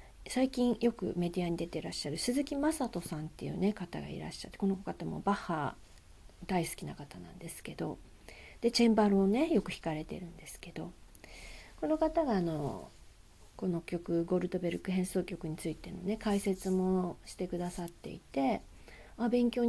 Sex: female